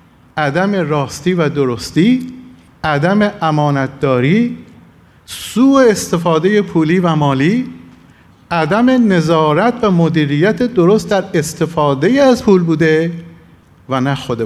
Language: Persian